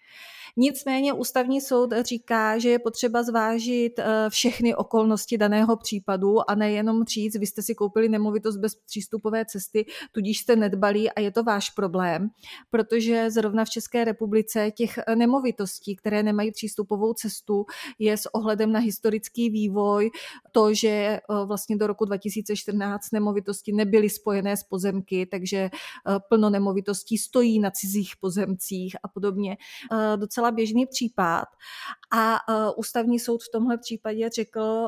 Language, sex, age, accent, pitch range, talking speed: Czech, female, 30-49, native, 205-235 Hz, 135 wpm